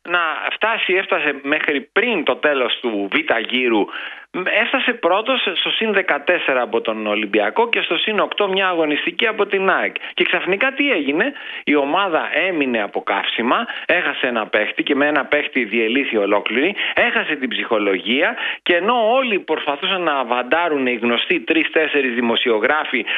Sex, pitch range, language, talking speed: male, 140-205 Hz, Greek, 150 wpm